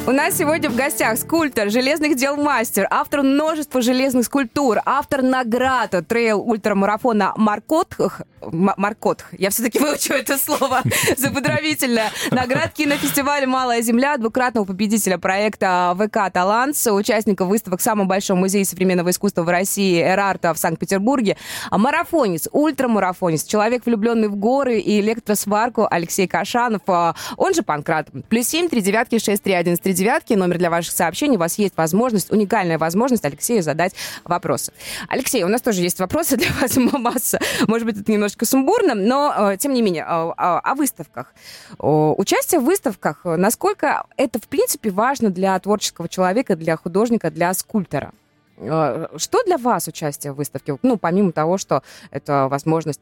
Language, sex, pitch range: Russian, female, 170-250 Hz